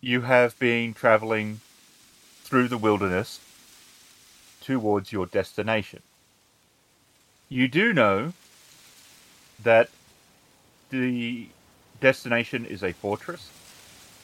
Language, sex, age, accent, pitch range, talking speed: English, male, 30-49, Australian, 95-115 Hz, 80 wpm